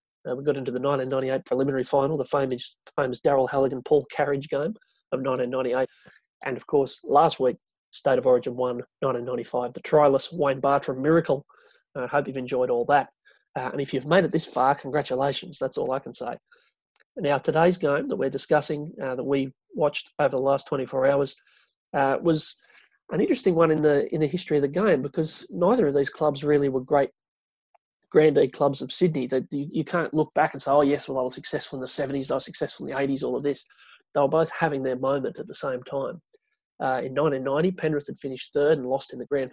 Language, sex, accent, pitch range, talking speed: English, male, Australian, 130-155 Hz, 210 wpm